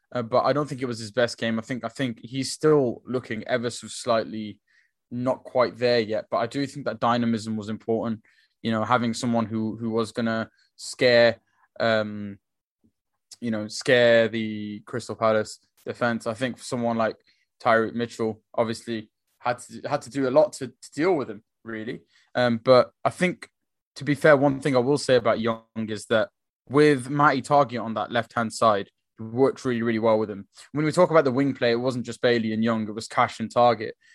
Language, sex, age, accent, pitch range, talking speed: English, male, 10-29, British, 115-140 Hz, 205 wpm